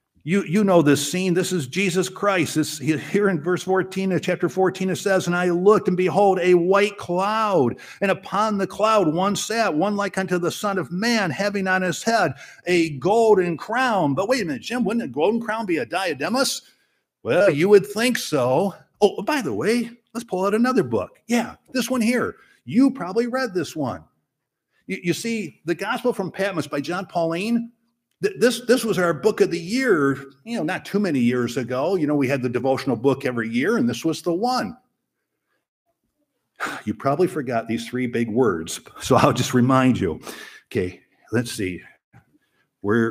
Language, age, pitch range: English, 50-69, 140-215 Hz